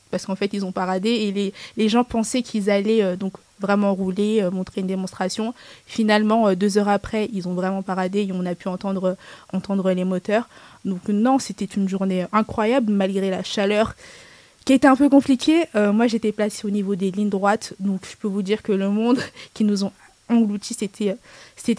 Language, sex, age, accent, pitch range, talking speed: French, female, 20-39, French, 195-220 Hz, 210 wpm